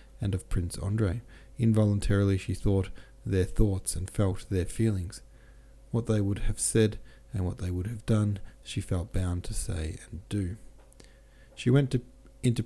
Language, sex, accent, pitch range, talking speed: English, male, Australian, 95-110 Hz, 160 wpm